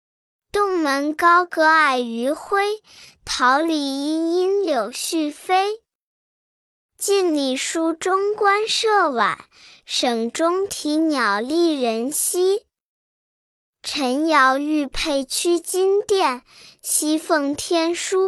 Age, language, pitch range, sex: 10-29, Chinese, 270-370 Hz, male